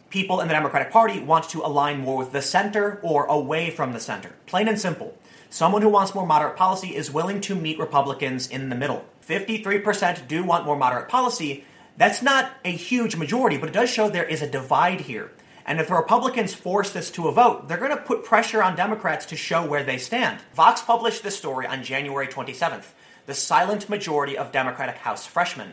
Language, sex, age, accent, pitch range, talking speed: English, male, 30-49, American, 150-215 Hz, 210 wpm